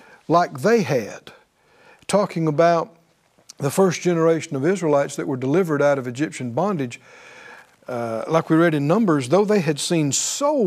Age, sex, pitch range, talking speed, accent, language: 60-79, male, 155-215 Hz, 155 wpm, American, English